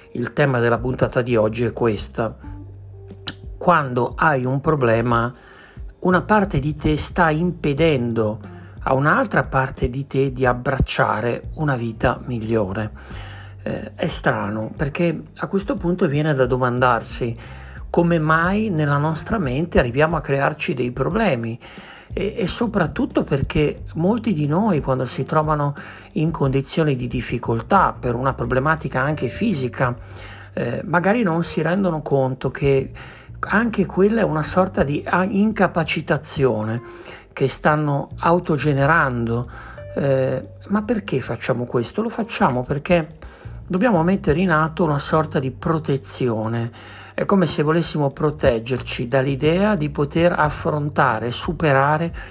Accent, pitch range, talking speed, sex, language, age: native, 120-165 Hz, 125 wpm, male, Italian, 50-69